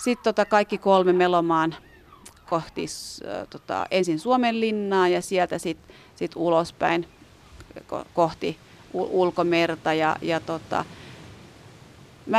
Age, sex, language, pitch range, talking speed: 30-49, female, Finnish, 175-220 Hz, 100 wpm